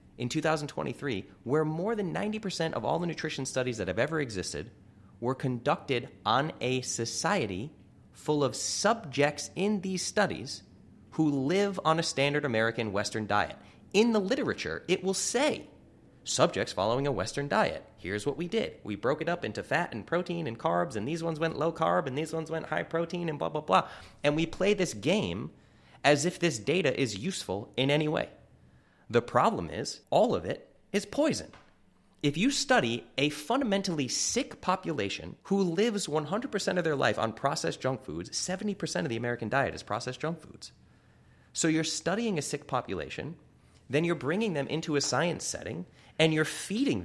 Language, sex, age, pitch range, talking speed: English, male, 30-49, 125-180 Hz, 180 wpm